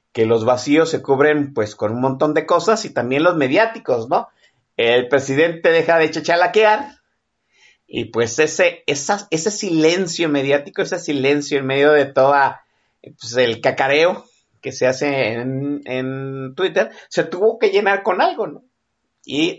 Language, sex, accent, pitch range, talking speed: Spanish, male, Mexican, 135-195 Hz, 155 wpm